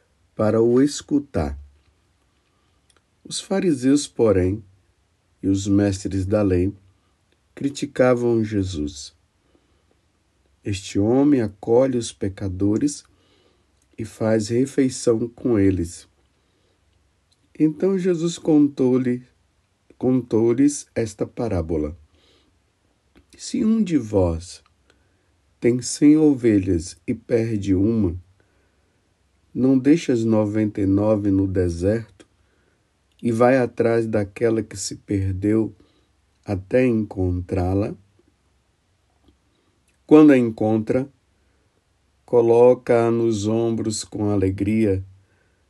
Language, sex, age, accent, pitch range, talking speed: Portuguese, male, 50-69, Brazilian, 95-120 Hz, 85 wpm